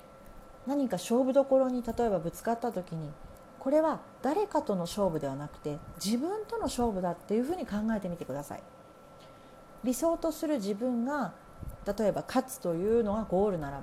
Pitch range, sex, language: 195-280 Hz, female, Japanese